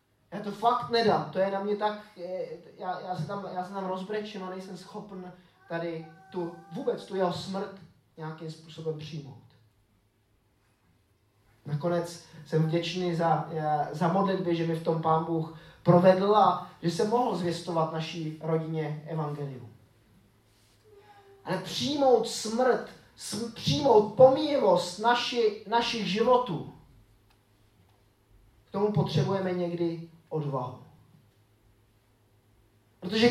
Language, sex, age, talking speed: Czech, male, 20-39, 110 wpm